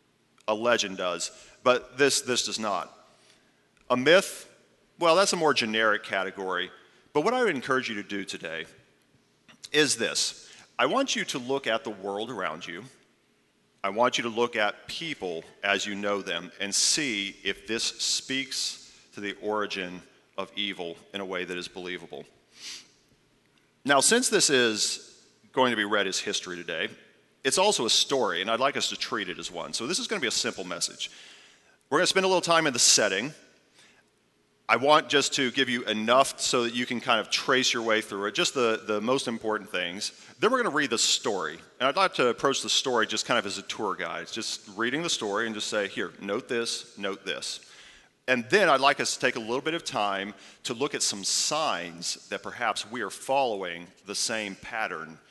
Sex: male